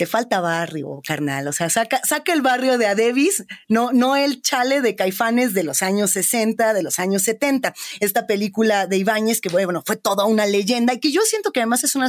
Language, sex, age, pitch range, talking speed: Spanish, female, 30-49, 205-255 Hz, 220 wpm